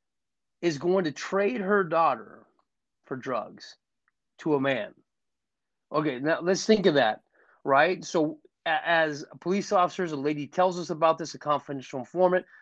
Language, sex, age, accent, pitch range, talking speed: English, male, 30-49, American, 140-170 Hz, 145 wpm